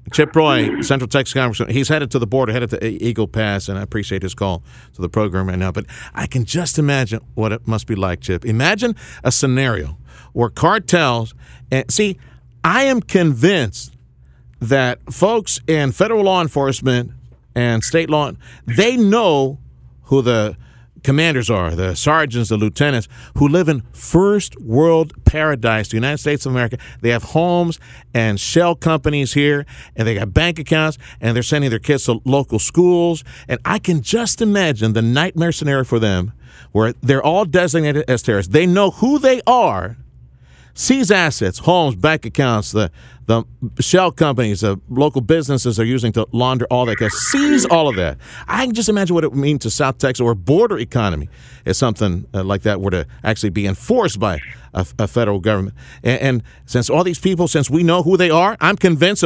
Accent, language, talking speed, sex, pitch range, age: American, English, 190 wpm, male, 110-155 Hz, 50-69